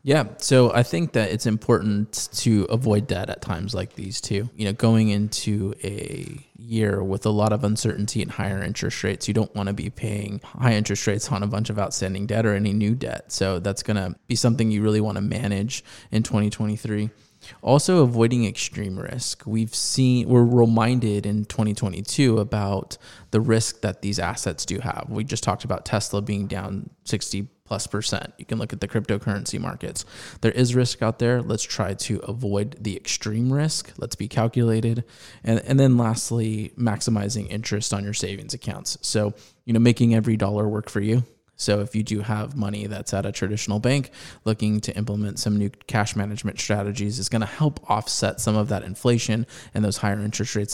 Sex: male